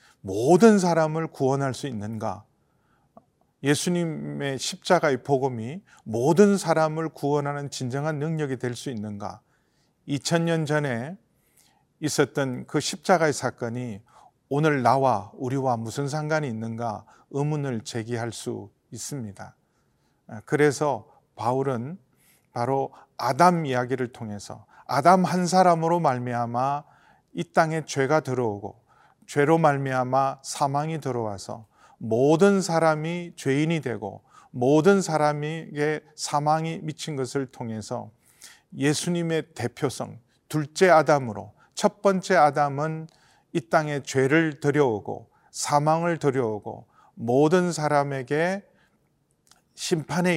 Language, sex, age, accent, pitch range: Korean, male, 40-59, native, 125-160 Hz